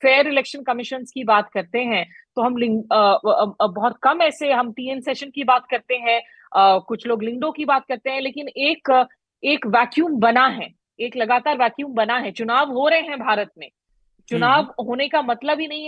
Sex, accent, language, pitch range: female, native, Hindi, 240-280 Hz